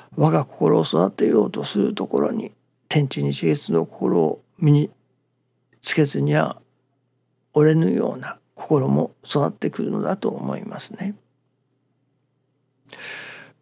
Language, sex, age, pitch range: Japanese, male, 60-79, 130-150 Hz